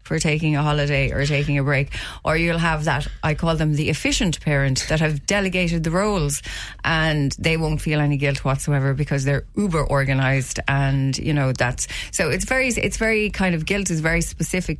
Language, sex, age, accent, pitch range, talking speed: English, female, 30-49, Irish, 140-170 Hz, 200 wpm